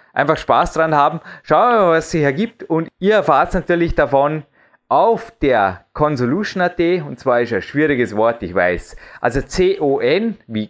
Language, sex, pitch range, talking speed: German, male, 135-180 Hz, 170 wpm